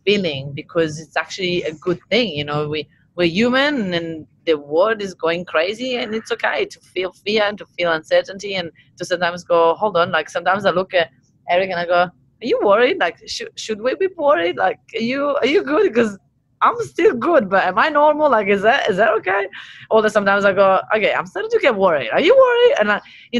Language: English